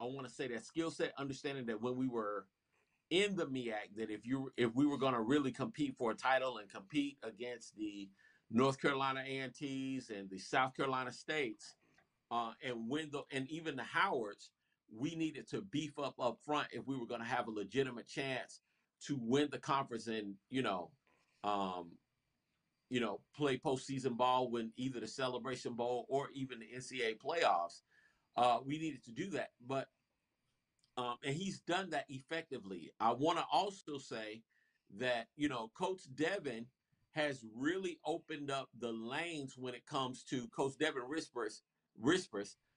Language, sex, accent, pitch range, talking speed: English, male, American, 120-150 Hz, 175 wpm